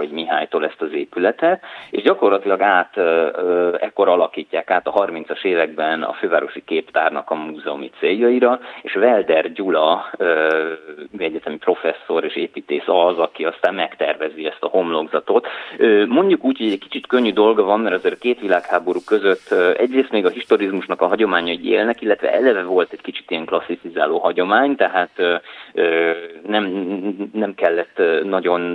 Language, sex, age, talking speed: Hungarian, male, 30-49, 140 wpm